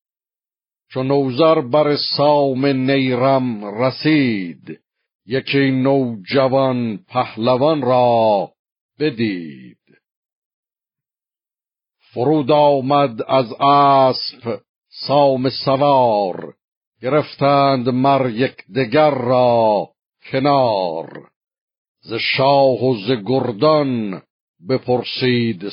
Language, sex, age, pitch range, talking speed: Persian, male, 50-69, 120-140 Hz, 65 wpm